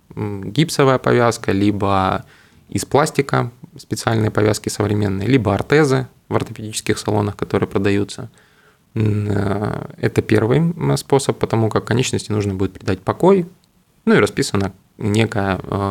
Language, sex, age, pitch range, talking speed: Russian, male, 20-39, 100-130 Hz, 110 wpm